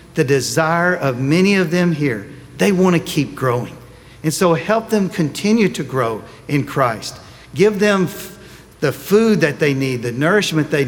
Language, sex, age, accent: English, male, 50-69, American